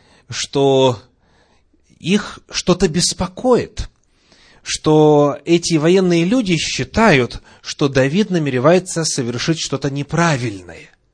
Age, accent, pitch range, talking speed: 30-49, native, 115-170 Hz, 80 wpm